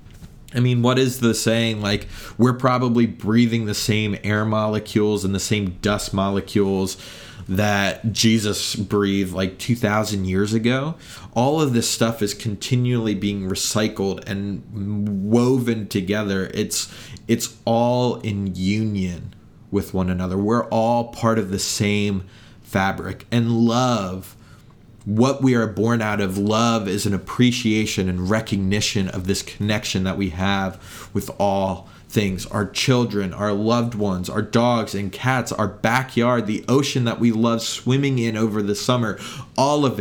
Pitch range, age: 100-120 Hz, 30-49